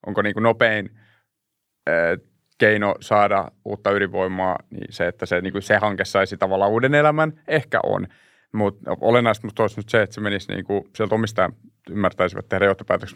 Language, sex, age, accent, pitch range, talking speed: Finnish, male, 30-49, native, 105-135 Hz, 160 wpm